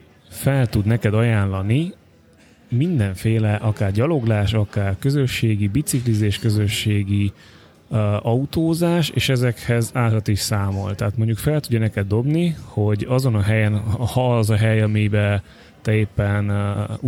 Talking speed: 125 wpm